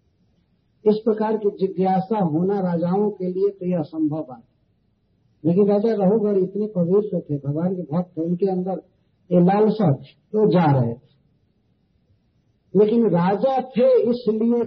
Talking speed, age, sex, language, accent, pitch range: 125 wpm, 50-69, male, Hindi, native, 150-210 Hz